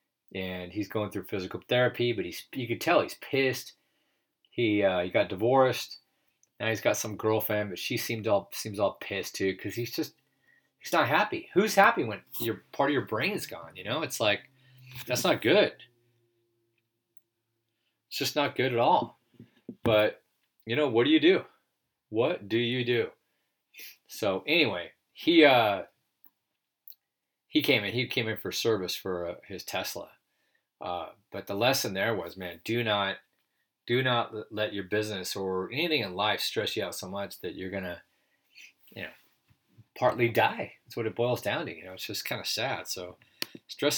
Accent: American